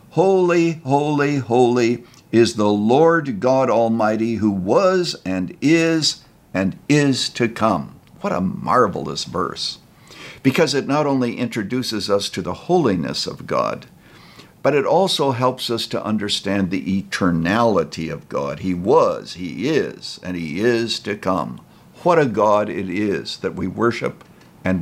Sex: male